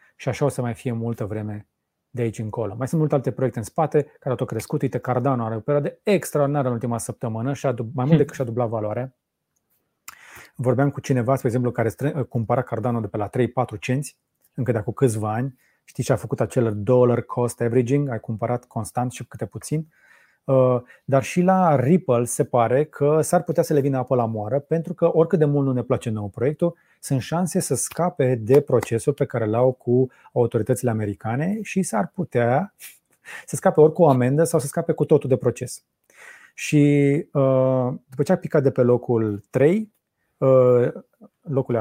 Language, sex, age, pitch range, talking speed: Romanian, male, 30-49, 120-145 Hz, 190 wpm